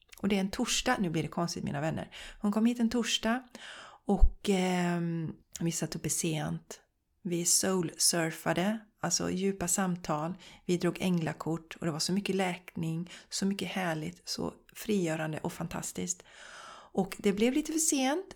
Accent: native